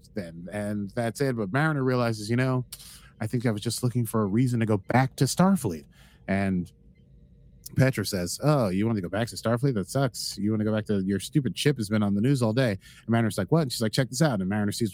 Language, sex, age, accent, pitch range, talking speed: English, male, 30-49, American, 105-135 Hz, 260 wpm